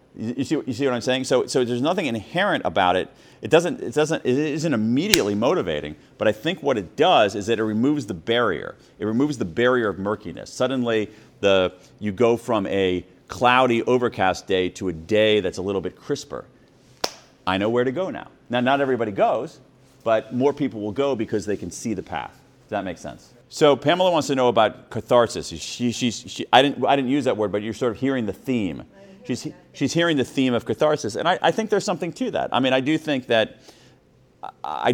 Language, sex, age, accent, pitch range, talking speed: English, male, 40-59, American, 100-135 Hz, 220 wpm